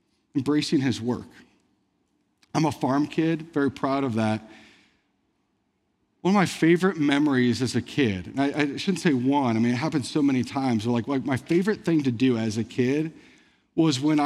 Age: 40-59